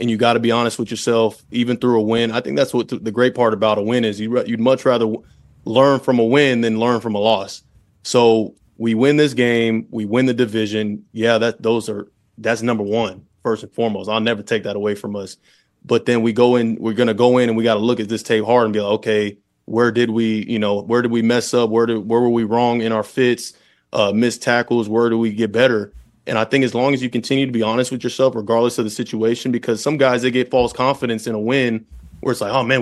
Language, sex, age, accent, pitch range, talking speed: English, male, 20-39, American, 110-125 Hz, 260 wpm